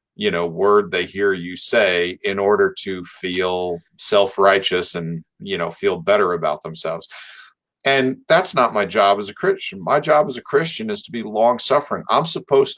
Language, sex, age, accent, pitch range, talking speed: English, male, 50-69, American, 100-155 Hz, 180 wpm